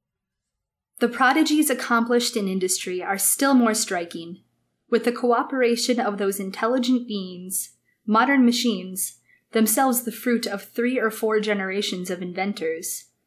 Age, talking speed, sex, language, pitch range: 20-39, 125 wpm, female, English, 195-245 Hz